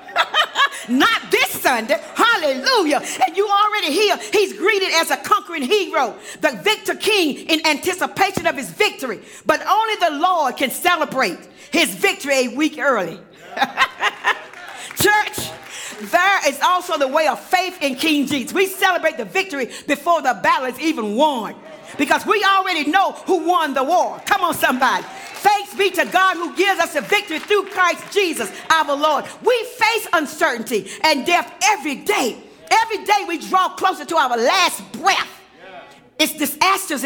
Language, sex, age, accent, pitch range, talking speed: English, female, 40-59, American, 290-390 Hz, 155 wpm